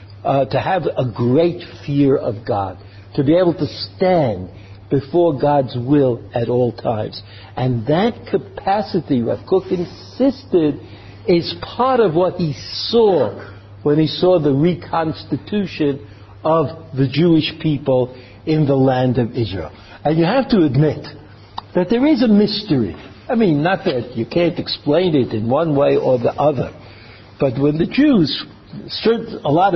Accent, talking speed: American, 150 wpm